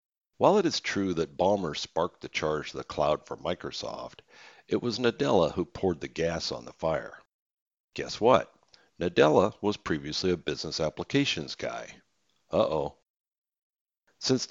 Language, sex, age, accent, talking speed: English, male, 60-79, American, 145 wpm